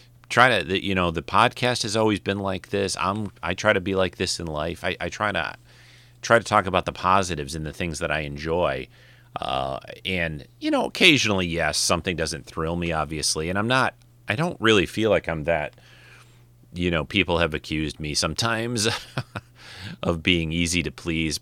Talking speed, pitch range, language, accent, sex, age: 195 wpm, 80-105 Hz, English, American, male, 30-49